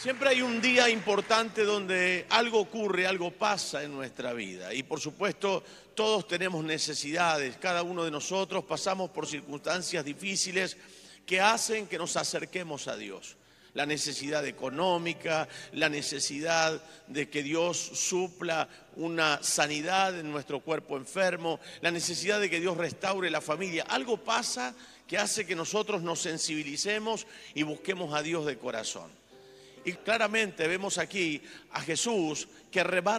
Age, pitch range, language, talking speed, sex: 50-69, 155-200 Hz, Spanish, 145 wpm, male